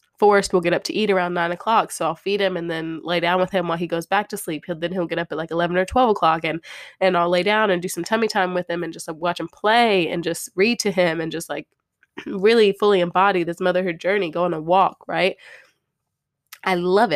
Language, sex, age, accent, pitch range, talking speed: English, female, 20-39, American, 170-205 Hz, 260 wpm